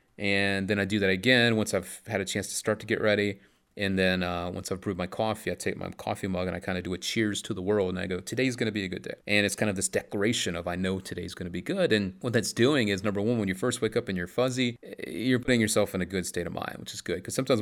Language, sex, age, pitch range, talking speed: English, male, 30-49, 95-120 Hz, 315 wpm